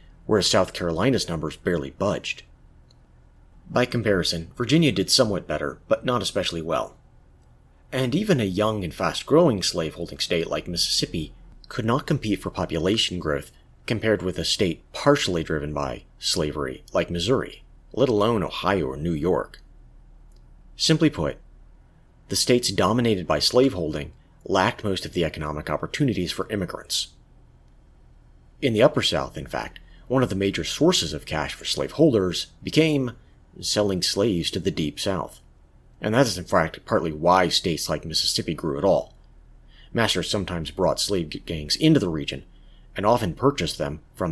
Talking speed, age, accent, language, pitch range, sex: 150 wpm, 30-49, American, English, 70-105 Hz, male